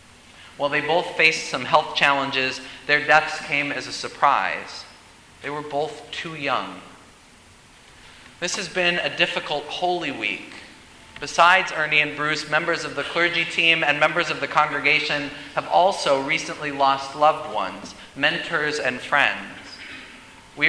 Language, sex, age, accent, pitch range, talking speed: English, male, 30-49, American, 145-175 Hz, 140 wpm